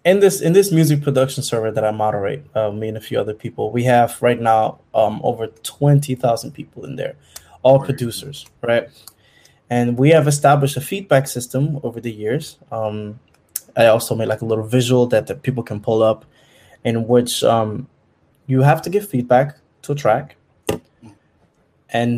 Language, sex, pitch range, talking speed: English, male, 115-145 Hz, 180 wpm